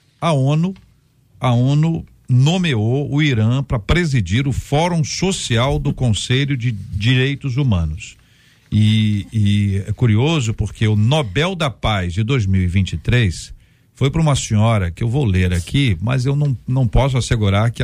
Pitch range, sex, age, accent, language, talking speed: 110-145 Hz, male, 50-69, Brazilian, Portuguese, 150 wpm